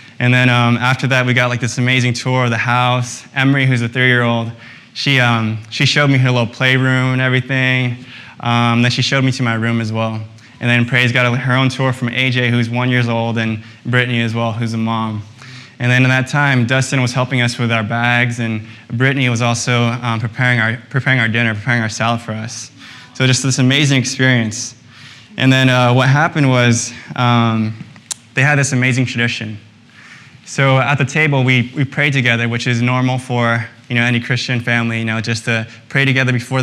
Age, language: 20-39, English